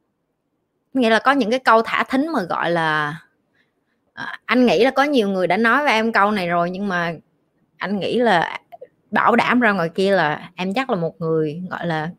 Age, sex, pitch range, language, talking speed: 20-39, female, 190-270 Hz, Vietnamese, 210 wpm